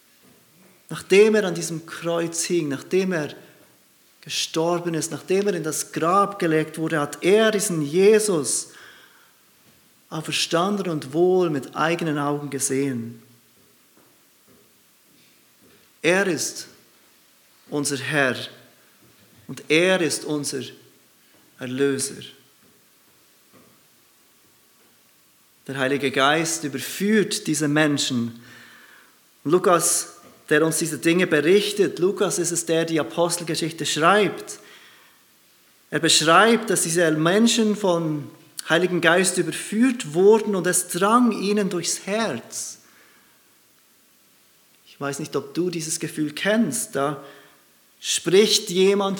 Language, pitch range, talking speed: German, 150-195 Hz, 100 wpm